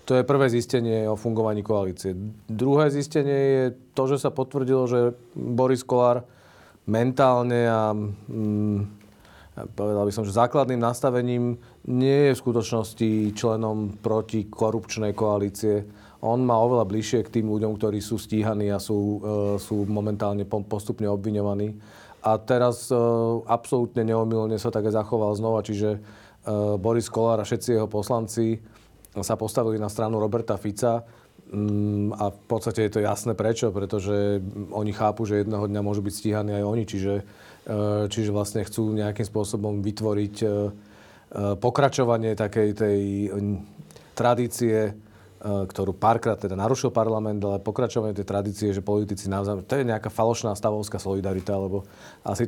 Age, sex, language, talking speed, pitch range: 40-59, male, Slovak, 140 wpm, 105-115 Hz